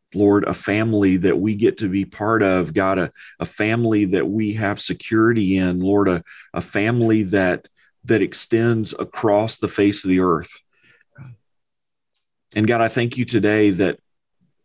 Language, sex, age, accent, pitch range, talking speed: English, male, 40-59, American, 90-105 Hz, 160 wpm